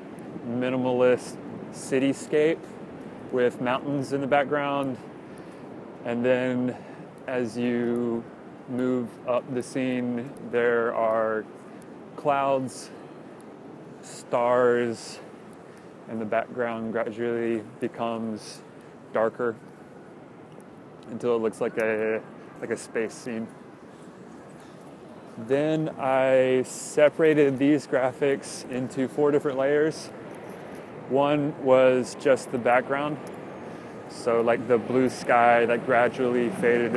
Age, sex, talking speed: 20-39, male, 90 wpm